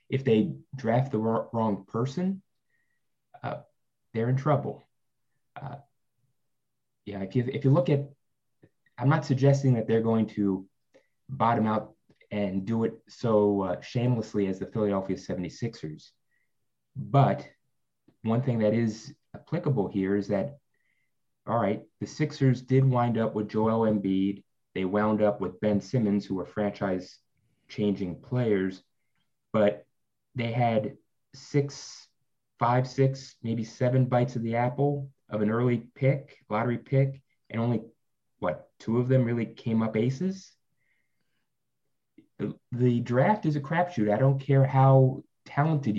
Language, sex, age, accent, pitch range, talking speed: English, male, 30-49, American, 105-135 Hz, 135 wpm